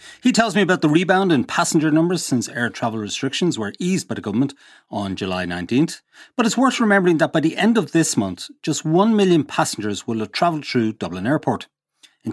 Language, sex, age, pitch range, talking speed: English, male, 30-49, 110-180 Hz, 210 wpm